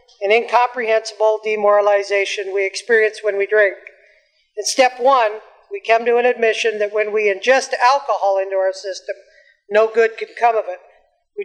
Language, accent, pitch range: English, American, 200-240 Hz